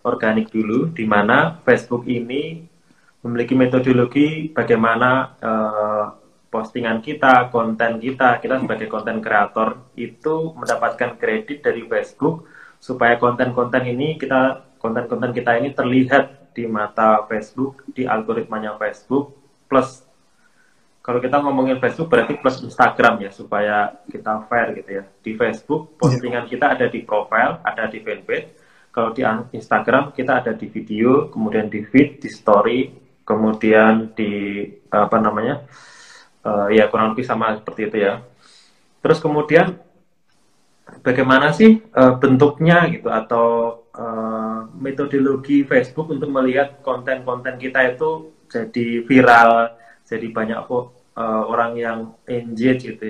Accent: native